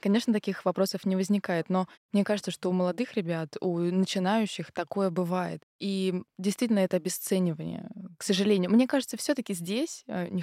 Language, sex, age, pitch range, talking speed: Russian, female, 20-39, 175-215 Hz, 155 wpm